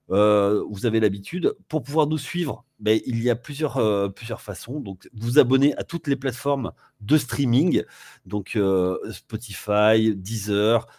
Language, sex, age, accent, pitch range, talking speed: French, male, 30-49, French, 110-150 Hz, 160 wpm